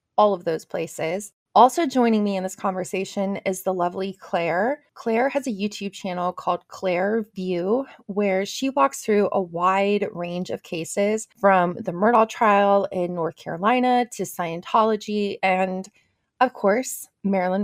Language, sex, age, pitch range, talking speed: English, female, 20-39, 180-220 Hz, 150 wpm